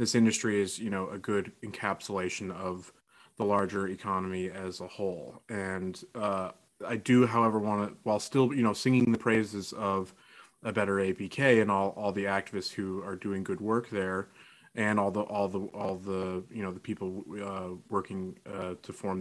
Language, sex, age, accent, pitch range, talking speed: English, male, 20-39, American, 100-120 Hz, 185 wpm